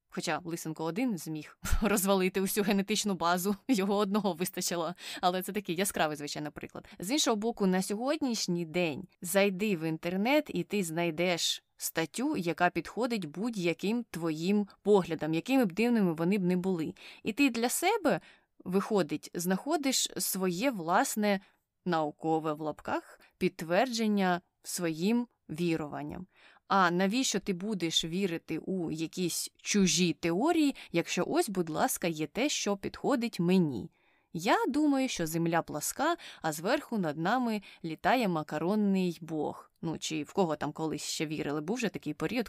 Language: Ukrainian